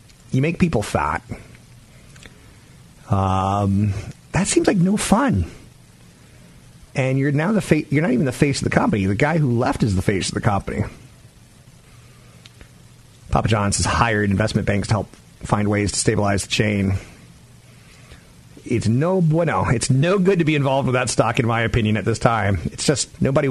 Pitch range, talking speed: 100-130 Hz, 175 wpm